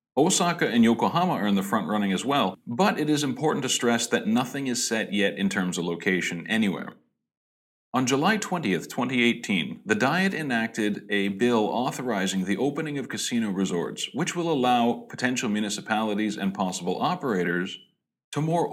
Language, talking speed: English, 165 wpm